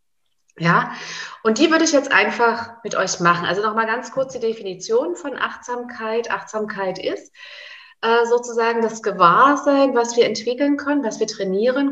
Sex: female